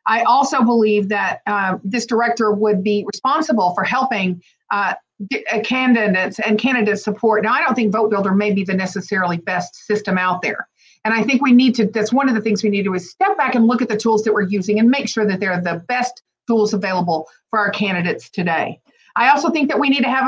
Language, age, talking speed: English, 50-69, 235 wpm